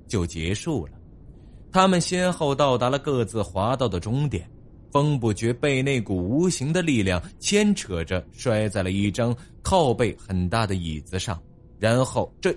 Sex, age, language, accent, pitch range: male, 20-39, Chinese, native, 100-150 Hz